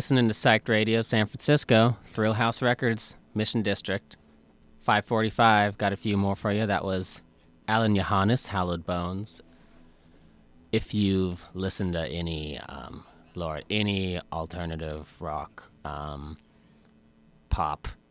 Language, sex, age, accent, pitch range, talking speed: English, male, 30-49, American, 65-95 Hz, 120 wpm